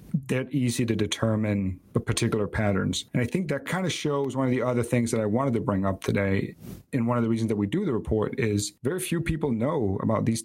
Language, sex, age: English, male, 40-59